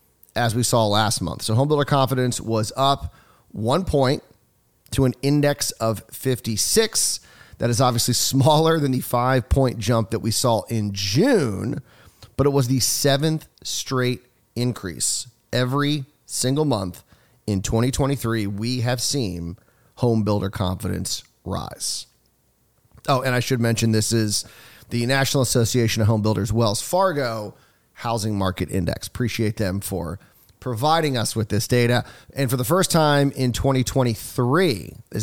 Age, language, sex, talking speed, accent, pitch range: 30-49, English, male, 140 wpm, American, 110-135 Hz